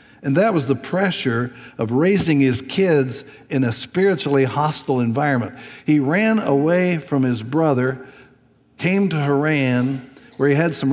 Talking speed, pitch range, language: 150 wpm, 135-165 Hz, English